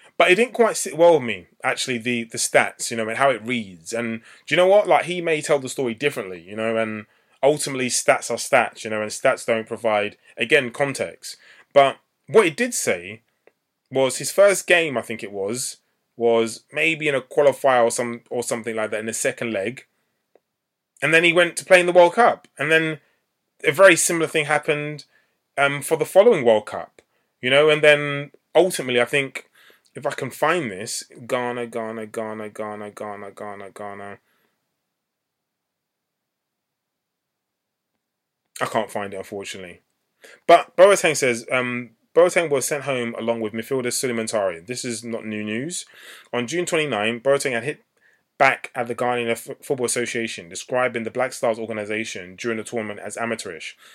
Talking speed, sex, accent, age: 175 wpm, male, British, 20-39